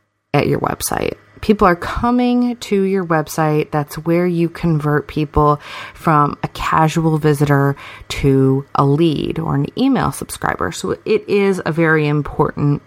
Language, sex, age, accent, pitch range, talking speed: English, female, 30-49, American, 145-190 Hz, 145 wpm